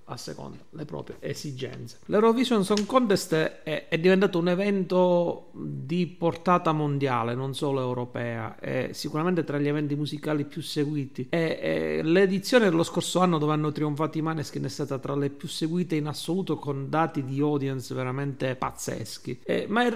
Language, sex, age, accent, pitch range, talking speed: Italian, male, 40-59, native, 145-195 Hz, 160 wpm